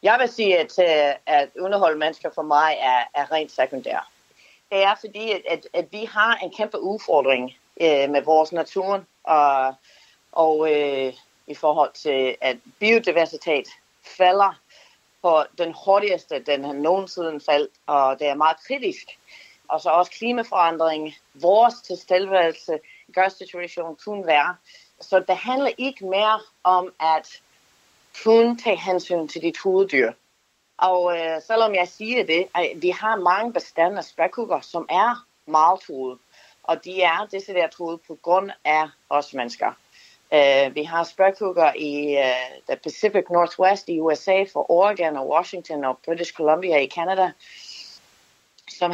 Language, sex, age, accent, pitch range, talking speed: Danish, female, 40-59, native, 150-195 Hz, 145 wpm